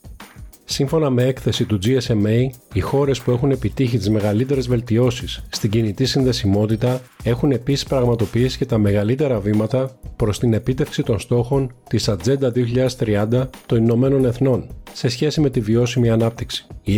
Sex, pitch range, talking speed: male, 110-130 Hz, 145 wpm